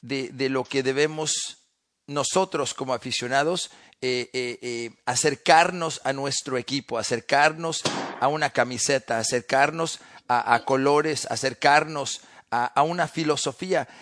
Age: 40-59